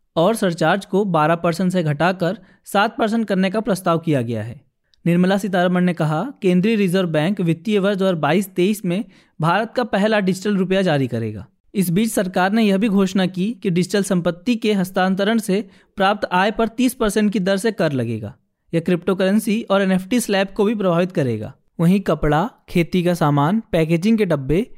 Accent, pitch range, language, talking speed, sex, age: native, 170-215 Hz, Hindi, 180 wpm, male, 20-39